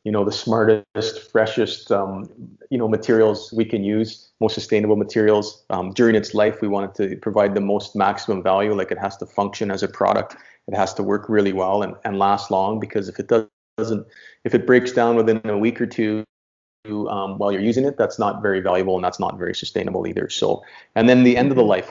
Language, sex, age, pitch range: English, male, 30-49, 100-115 Hz